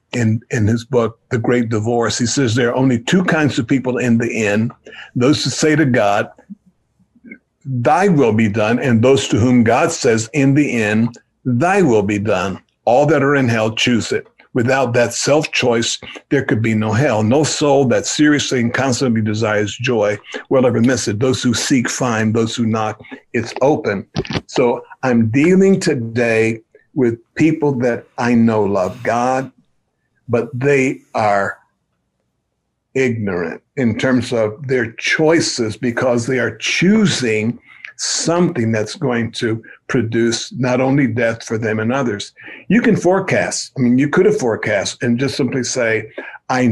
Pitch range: 115-140 Hz